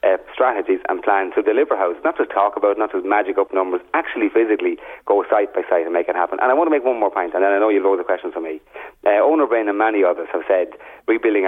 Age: 40-59